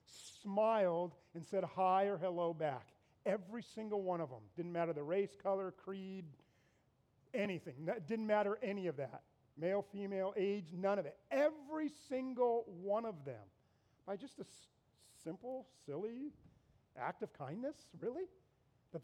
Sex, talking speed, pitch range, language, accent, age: male, 150 wpm, 175-230 Hz, English, American, 40-59